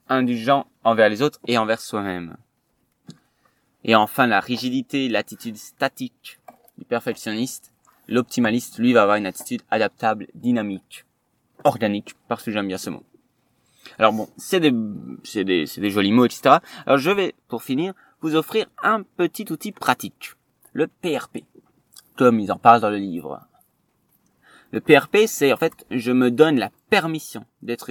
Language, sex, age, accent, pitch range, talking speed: French, male, 20-39, French, 115-155 Hz, 155 wpm